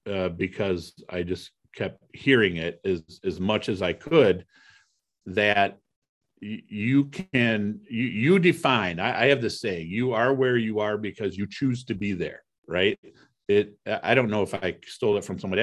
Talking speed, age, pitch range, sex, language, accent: 180 wpm, 50-69, 100-130 Hz, male, English, American